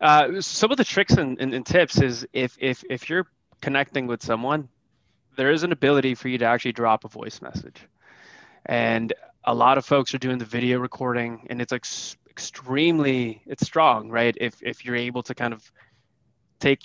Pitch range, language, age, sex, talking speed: 115-140 Hz, English, 20-39, male, 185 wpm